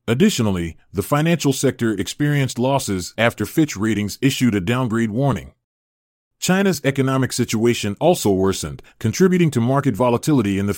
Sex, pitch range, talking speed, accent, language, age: male, 105-140 Hz, 135 wpm, American, English, 30-49